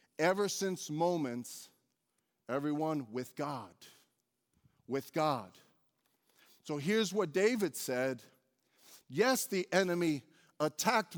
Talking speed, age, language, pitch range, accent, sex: 90 wpm, 40-59, English, 150-200 Hz, American, male